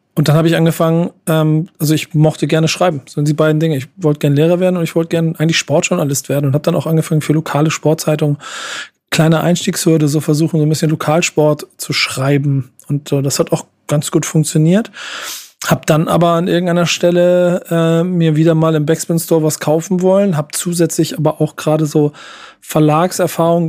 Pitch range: 155-170 Hz